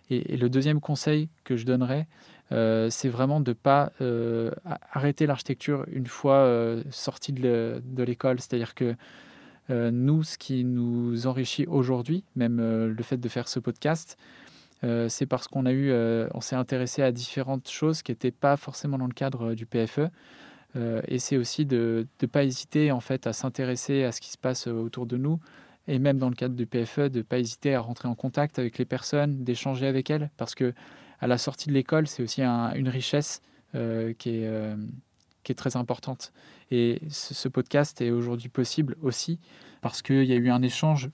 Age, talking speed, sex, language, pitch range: 20-39, 200 wpm, male, French, 120-140 Hz